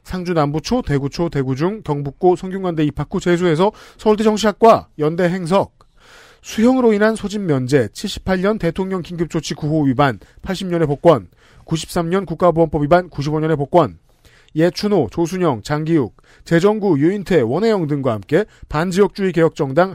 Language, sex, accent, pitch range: Korean, male, native, 150-195 Hz